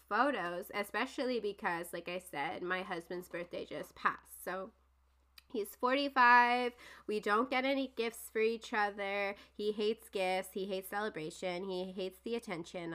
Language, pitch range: English, 185-240 Hz